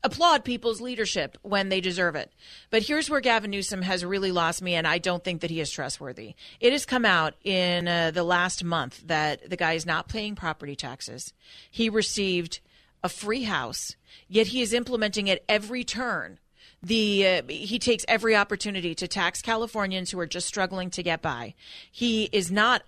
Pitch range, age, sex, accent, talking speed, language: 180-215 Hz, 40-59, female, American, 190 wpm, English